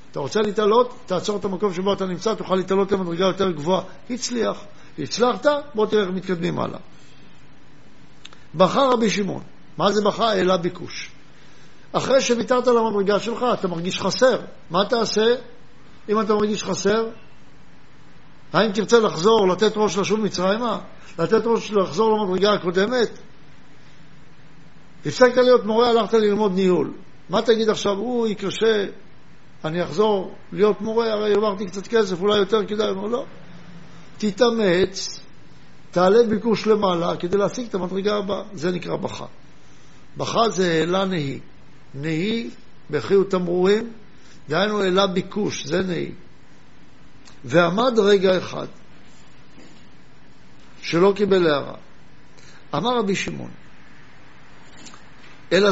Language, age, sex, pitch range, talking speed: Hebrew, 60-79, male, 175-220 Hz, 120 wpm